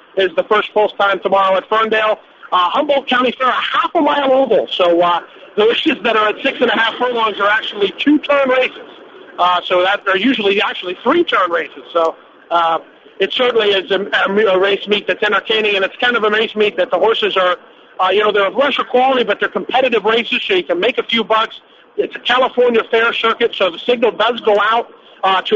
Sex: male